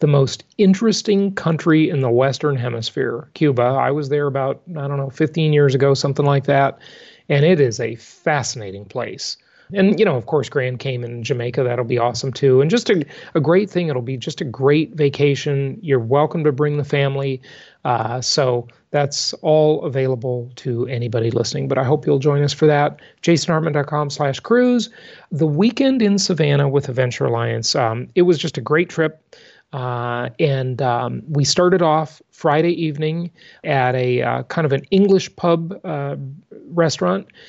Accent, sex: American, male